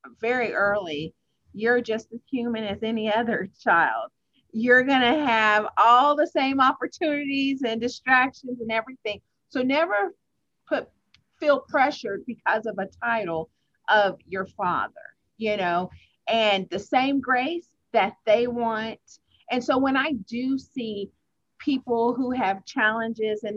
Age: 50-69